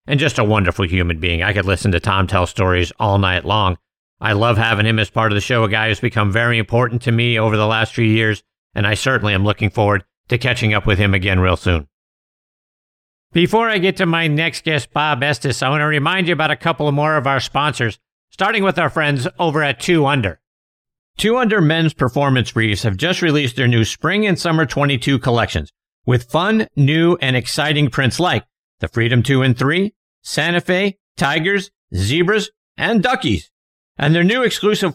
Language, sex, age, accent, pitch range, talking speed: English, male, 50-69, American, 110-170 Hz, 205 wpm